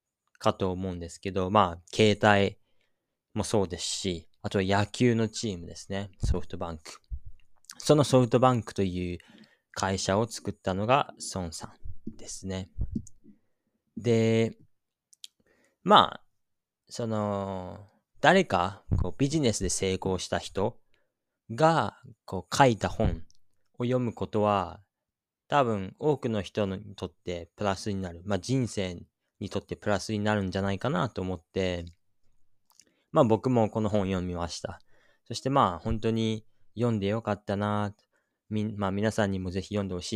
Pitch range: 90-110 Hz